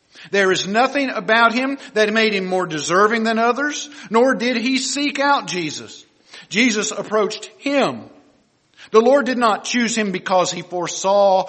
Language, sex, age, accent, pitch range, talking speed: English, male, 50-69, American, 175-235 Hz, 155 wpm